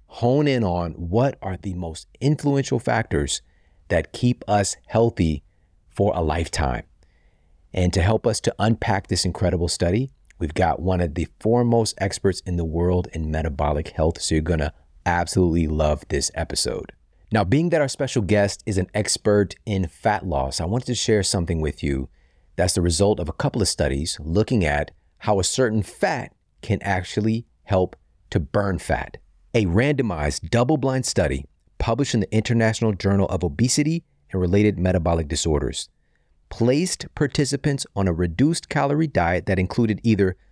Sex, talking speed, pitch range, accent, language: male, 160 wpm, 85-120 Hz, American, English